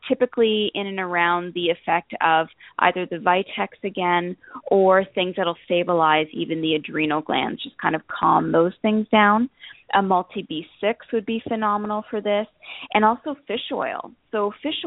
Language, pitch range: English, 170-215 Hz